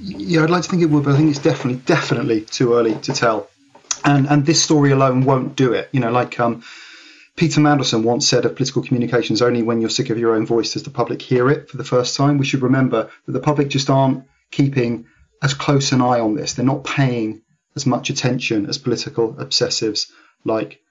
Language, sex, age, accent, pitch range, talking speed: English, male, 30-49, British, 120-145 Hz, 225 wpm